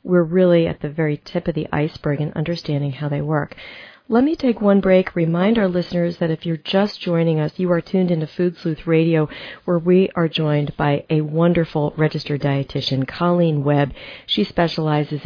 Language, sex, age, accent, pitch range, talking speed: English, female, 40-59, American, 150-190 Hz, 190 wpm